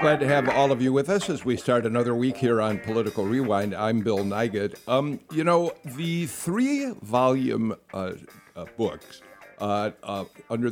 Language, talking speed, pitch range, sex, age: English, 175 wpm, 110-140 Hz, male, 60-79